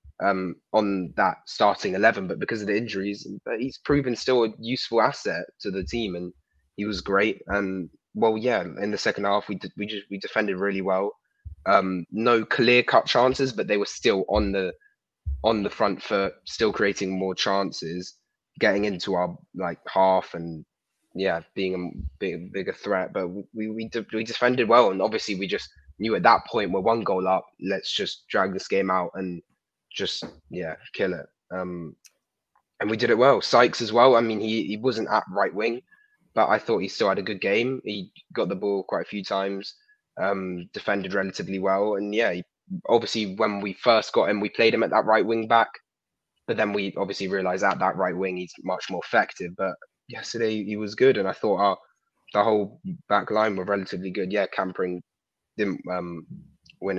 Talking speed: 200 wpm